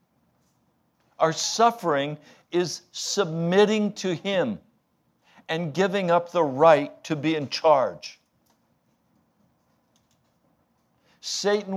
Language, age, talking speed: English, 60-79, 80 wpm